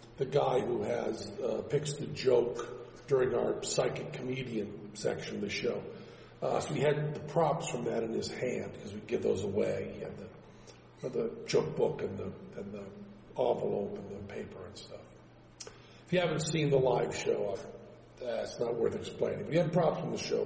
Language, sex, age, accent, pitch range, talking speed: English, male, 50-69, American, 115-160 Hz, 200 wpm